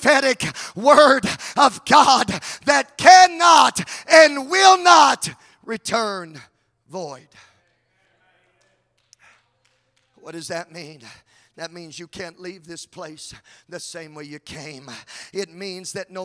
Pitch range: 165-220 Hz